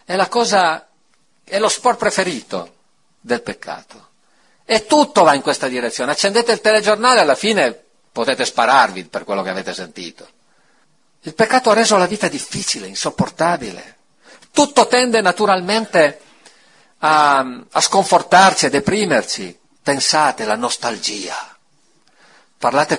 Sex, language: male, Italian